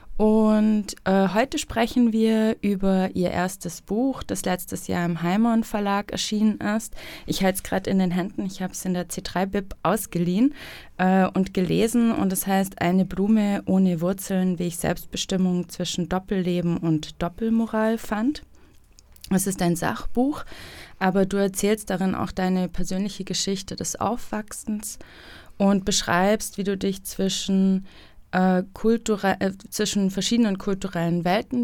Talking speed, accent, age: 150 wpm, German, 20-39